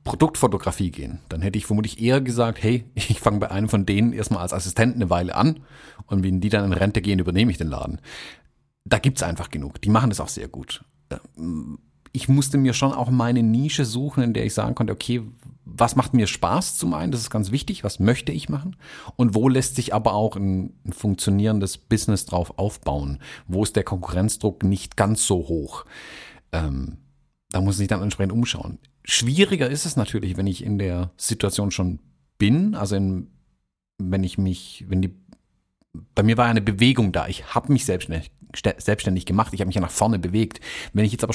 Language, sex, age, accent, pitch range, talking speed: German, male, 40-59, German, 95-120 Hz, 200 wpm